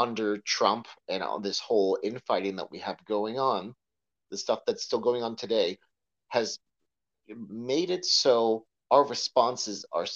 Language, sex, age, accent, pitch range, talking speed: English, male, 40-59, American, 110-185 Hz, 155 wpm